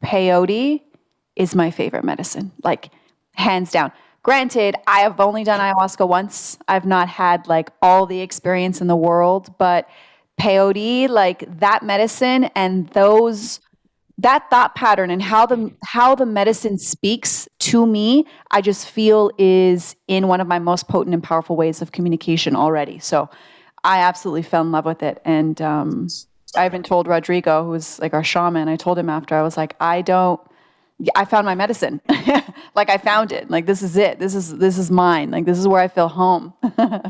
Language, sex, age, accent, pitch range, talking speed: English, female, 30-49, American, 175-210 Hz, 180 wpm